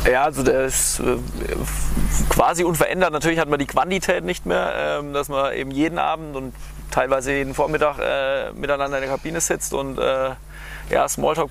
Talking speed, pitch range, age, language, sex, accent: 150 wpm, 130-150 Hz, 20-39, German, male, German